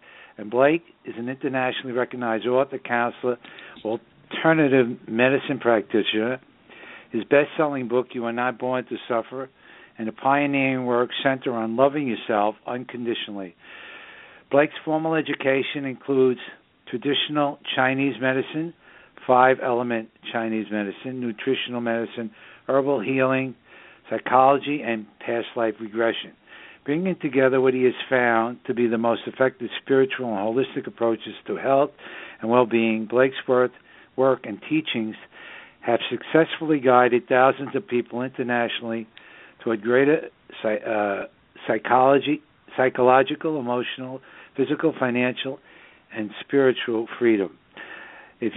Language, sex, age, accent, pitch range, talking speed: English, male, 60-79, American, 115-135 Hz, 115 wpm